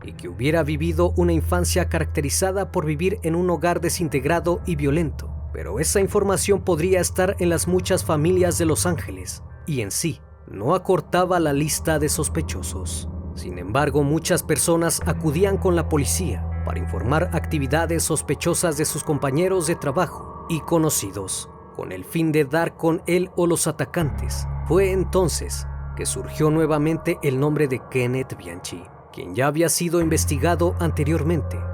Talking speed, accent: 155 wpm, Mexican